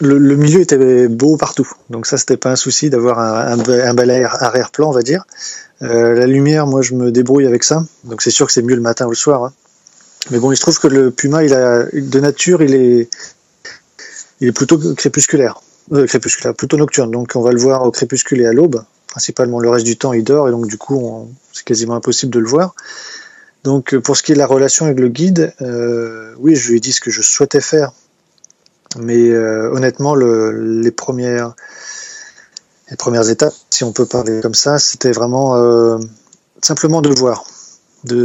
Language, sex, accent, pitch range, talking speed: French, male, French, 120-145 Hz, 215 wpm